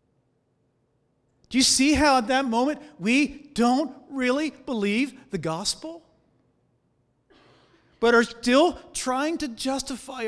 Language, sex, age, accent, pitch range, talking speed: English, male, 50-69, American, 220-285 Hz, 110 wpm